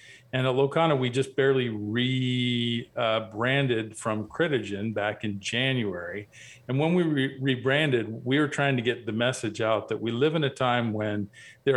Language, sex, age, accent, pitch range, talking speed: English, male, 40-59, American, 110-135 Hz, 170 wpm